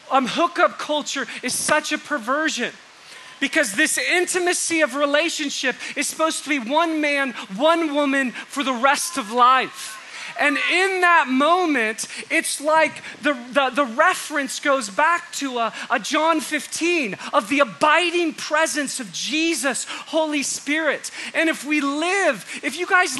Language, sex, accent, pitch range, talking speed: English, male, American, 260-330 Hz, 145 wpm